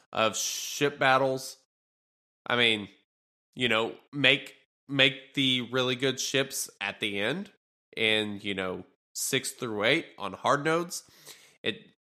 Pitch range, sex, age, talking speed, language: 105-130 Hz, male, 20-39, 130 wpm, English